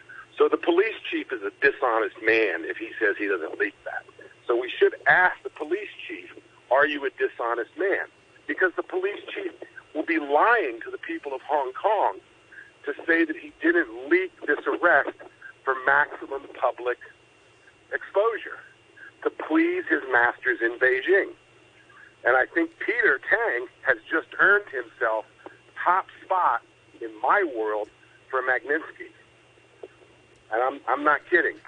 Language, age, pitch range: English, 50-69, 355-415 Hz